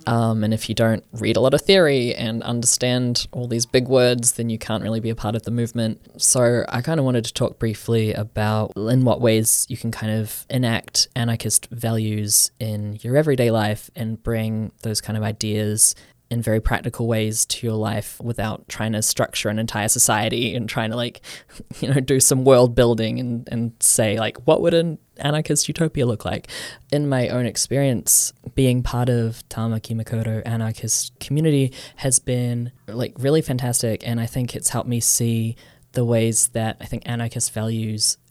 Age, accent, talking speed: 10-29, Australian, 190 wpm